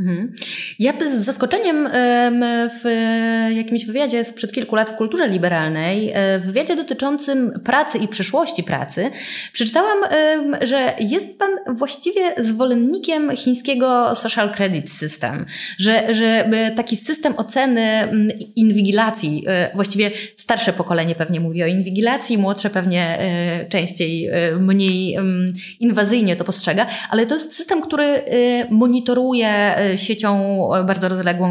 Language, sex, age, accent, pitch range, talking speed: Polish, female, 20-39, native, 185-245 Hz, 110 wpm